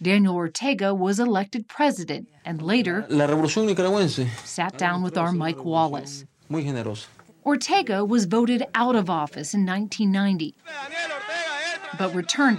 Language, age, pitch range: English, 40-59, 175-240 Hz